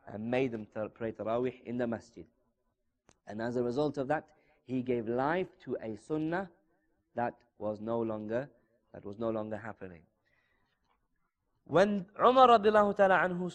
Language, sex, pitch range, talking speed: English, male, 110-155 Hz, 140 wpm